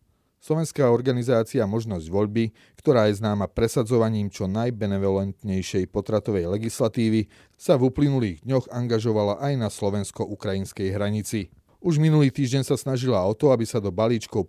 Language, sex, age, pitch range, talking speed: Slovak, male, 30-49, 100-120 Hz, 135 wpm